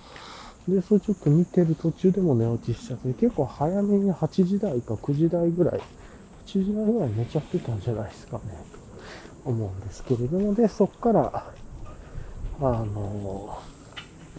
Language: Japanese